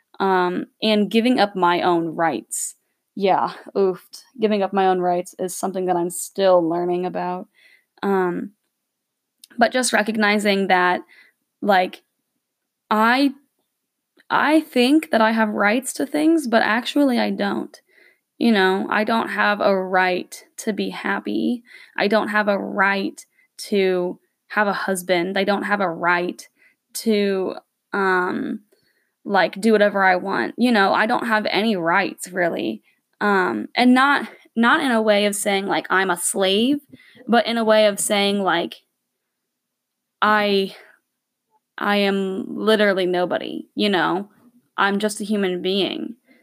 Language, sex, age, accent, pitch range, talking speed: English, female, 10-29, American, 190-225 Hz, 145 wpm